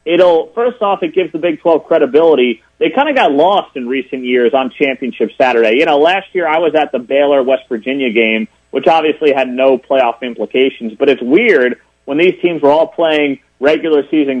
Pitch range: 130-165 Hz